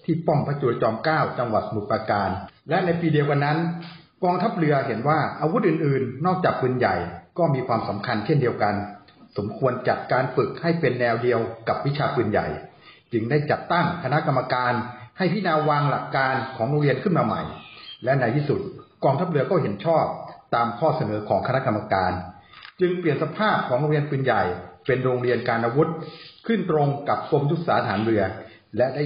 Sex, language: male, Thai